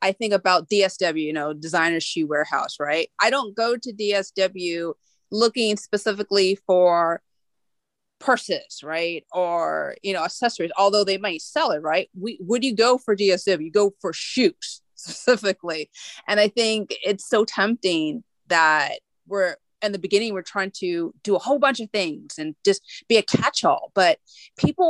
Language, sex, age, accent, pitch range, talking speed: English, female, 30-49, American, 185-235 Hz, 160 wpm